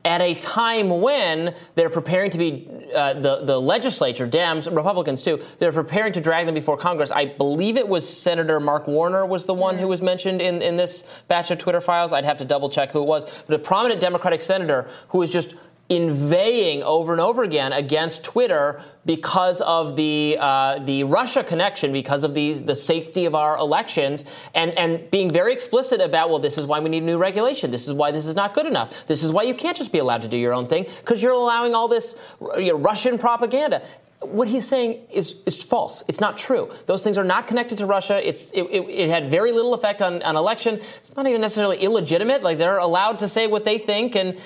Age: 30-49